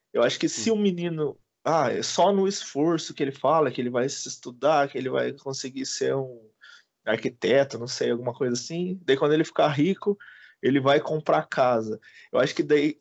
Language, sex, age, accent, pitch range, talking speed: Portuguese, male, 20-39, Brazilian, 135-195 Hz, 210 wpm